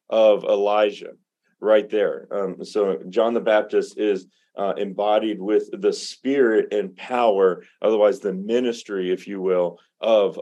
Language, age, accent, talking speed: English, 40-59, American, 140 wpm